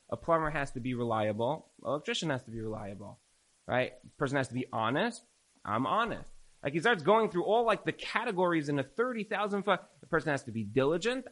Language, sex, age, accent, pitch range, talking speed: English, male, 30-49, American, 125-175 Hz, 215 wpm